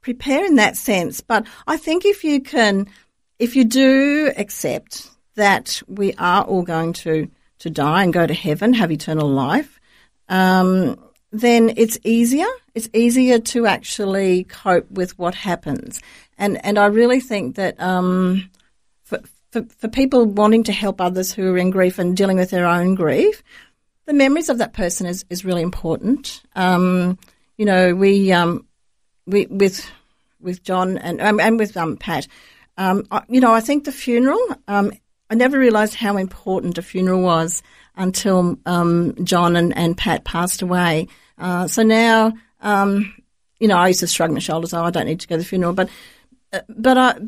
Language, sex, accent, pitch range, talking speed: English, female, Australian, 180-235 Hz, 175 wpm